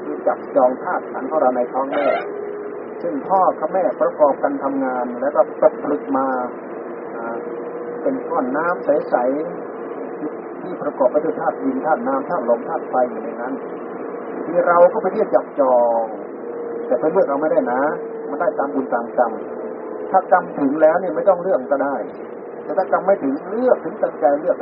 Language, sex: Thai, male